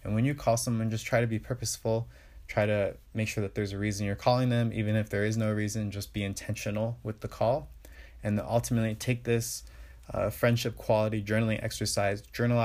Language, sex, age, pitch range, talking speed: English, male, 20-39, 100-115 Hz, 205 wpm